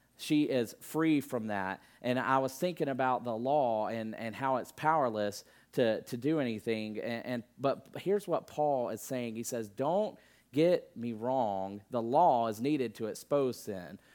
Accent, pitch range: American, 110-135 Hz